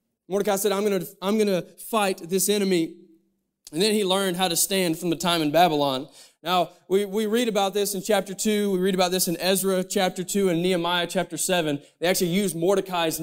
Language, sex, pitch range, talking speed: English, male, 175-215 Hz, 220 wpm